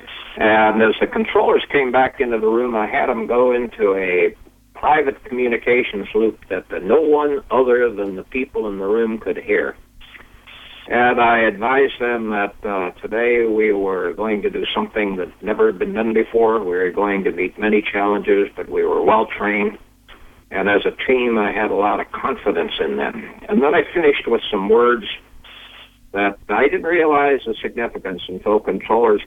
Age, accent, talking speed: 60-79, American, 180 wpm